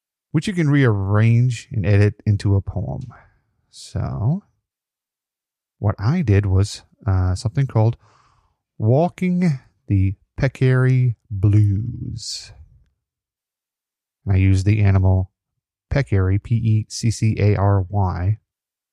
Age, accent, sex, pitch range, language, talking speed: 30-49, American, male, 95-120 Hz, English, 85 wpm